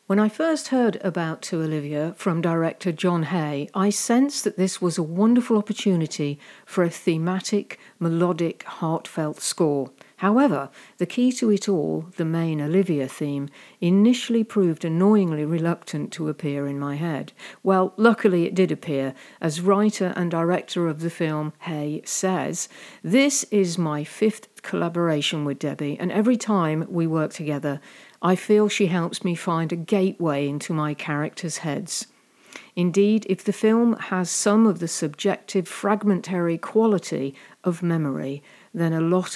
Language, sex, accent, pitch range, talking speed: English, female, British, 155-205 Hz, 150 wpm